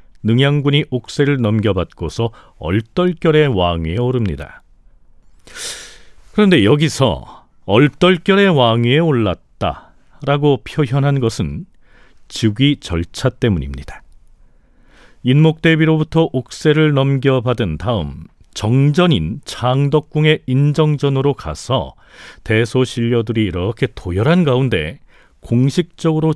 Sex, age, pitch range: male, 40-59, 110-150 Hz